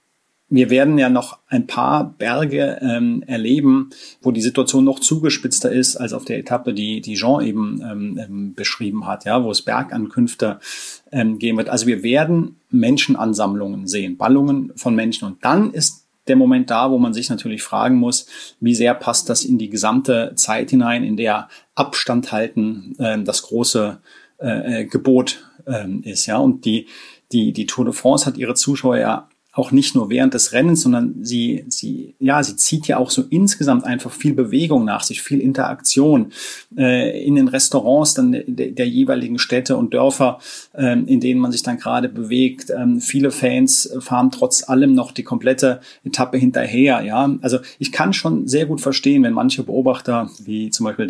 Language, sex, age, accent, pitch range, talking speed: German, male, 30-49, German, 120-165 Hz, 180 wpm